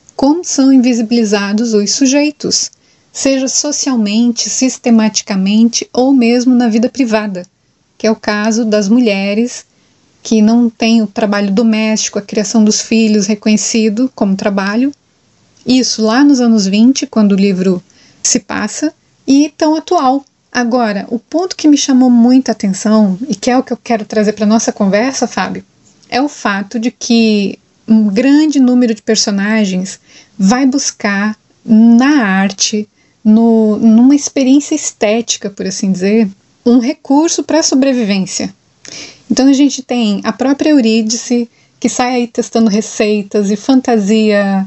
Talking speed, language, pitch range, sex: 140 wpm, Portuguese, 210-250 Hz, female